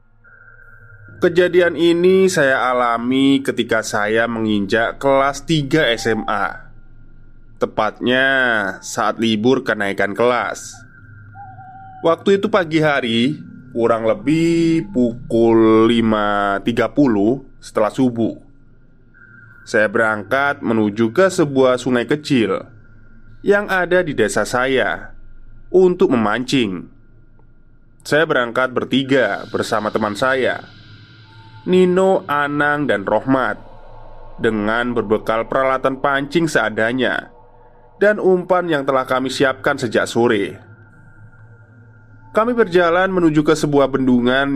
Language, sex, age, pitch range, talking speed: Indonesian, male, 20-39, 110-145 Hz, 90 wpm